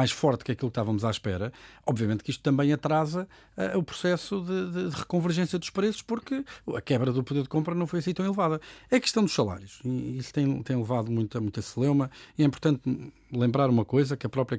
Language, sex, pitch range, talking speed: Portuguese, male, 120-155 Hz, 225 wpm